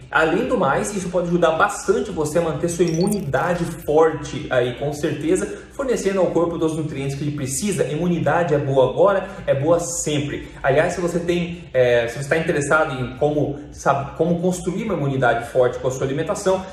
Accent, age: Brazilian, 20-39